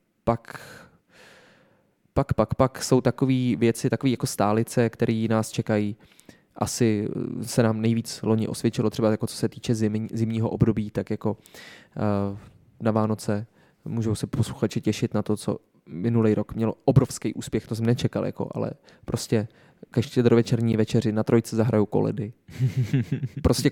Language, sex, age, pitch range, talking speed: Czech, male, 20-39, 110-130 Hz, 135 wpm